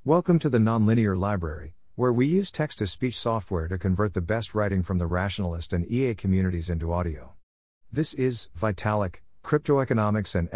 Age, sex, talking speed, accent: 50-69, male, 170 wpm, American